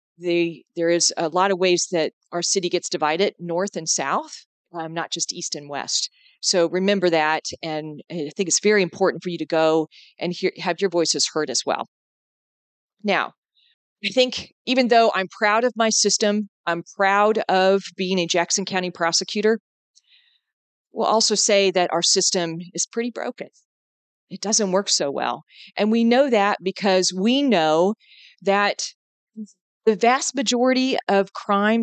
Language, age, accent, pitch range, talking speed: English, 40-59, American, 175-220 Hz, 165 wpm